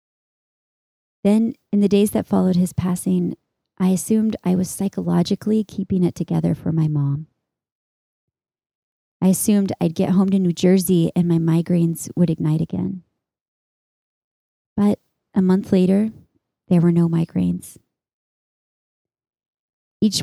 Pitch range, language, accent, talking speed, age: 165-190 Hz, English, American, 125 wpm, 20-39